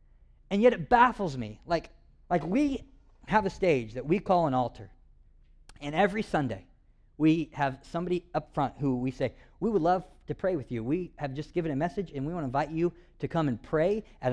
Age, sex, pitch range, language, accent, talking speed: 40-59, male, 140-200 Hz, English, American, 215 wpm